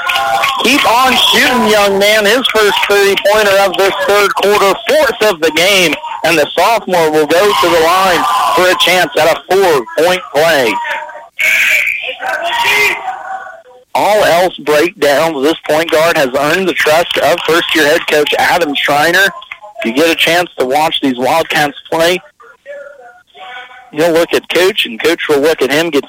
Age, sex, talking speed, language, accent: 50-69, male, 155 wpm, English, American